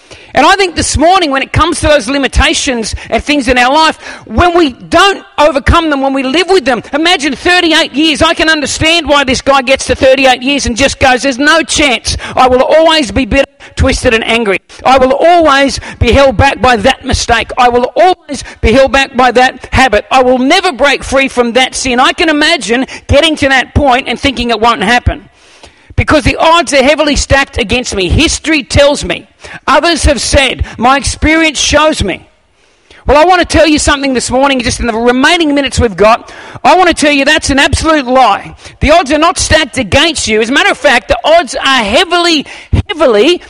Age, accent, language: 50-69, Australian, English